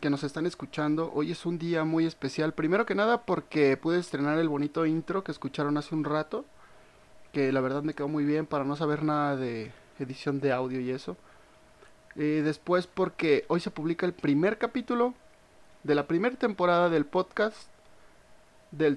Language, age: Spanish, 30-49